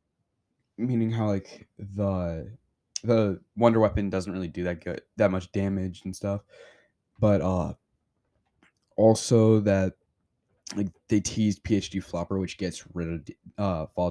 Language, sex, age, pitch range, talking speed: English, male, 20-39, 85-100 Hz, 135 wpm